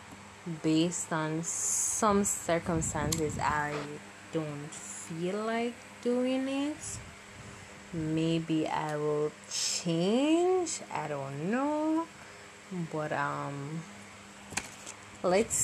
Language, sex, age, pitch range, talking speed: English, female, 20-39, 150-205 Hz, 75 wpm